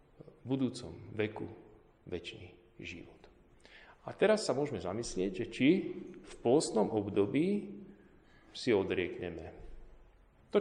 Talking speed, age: 100 wpm, 40-59